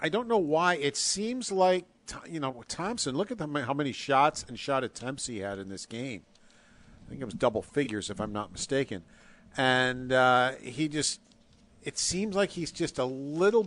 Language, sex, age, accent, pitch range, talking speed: English, male, 50-69, American, 120-150 Hz, 195 wpm